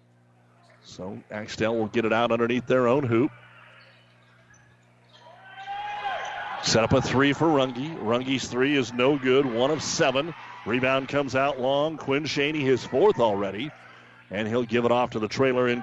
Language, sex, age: English, male, 40-59